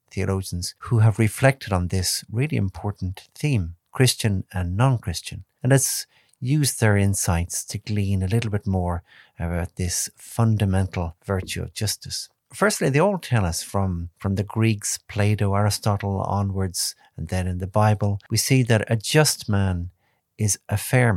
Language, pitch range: English, 95-120 Hz